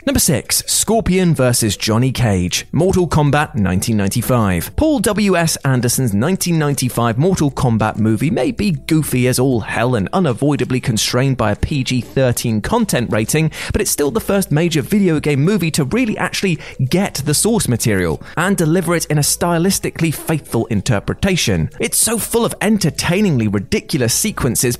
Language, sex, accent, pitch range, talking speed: English, male, British, 120-175 Hz, 150 wpm